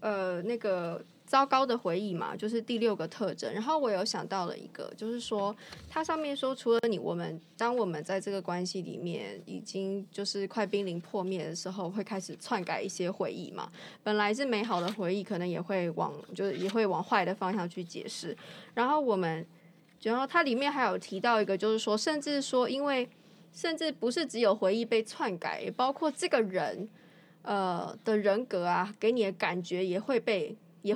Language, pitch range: Chinese, 185-235 Hz